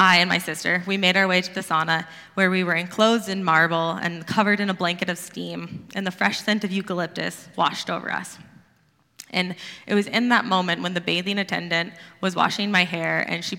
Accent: American